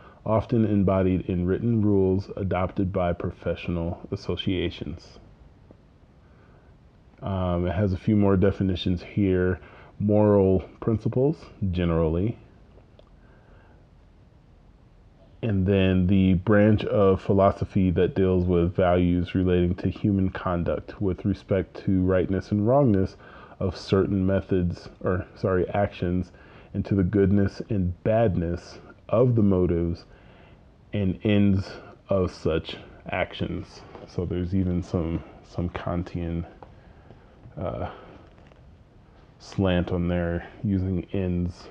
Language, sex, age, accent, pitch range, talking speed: English, male, 30-49, American, 90-100 Hz, 105 wpm